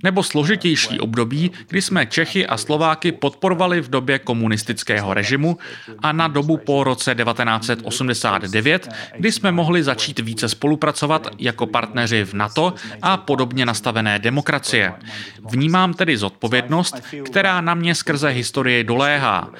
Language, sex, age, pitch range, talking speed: Czech, male, 30-49, 115-160 Hz, 130 wpm